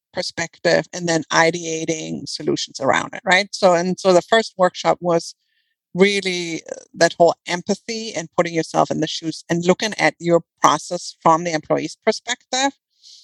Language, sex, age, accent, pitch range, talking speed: English, female, 50-69, American, 165-205 Hz, 155 wpm